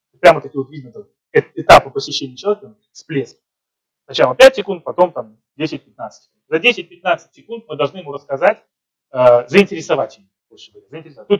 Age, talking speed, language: 30-49, 120 wpm, Russian